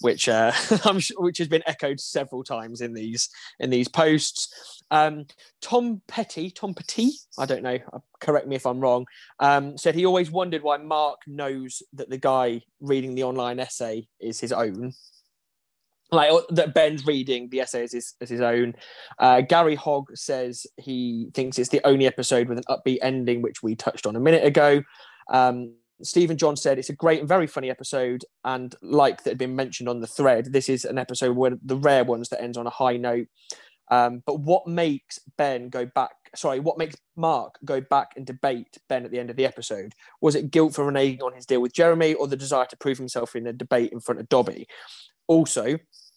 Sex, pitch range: male, 125-150 Hz